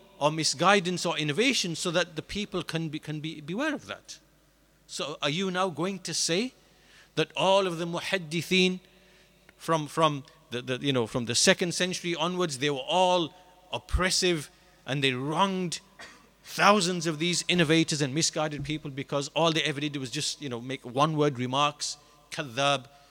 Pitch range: 140-180 Hz